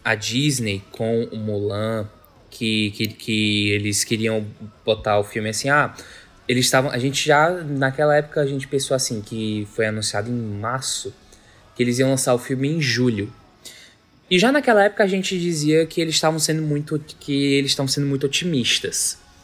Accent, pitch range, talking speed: Brazilian, 110-155 Hz, 175 wpm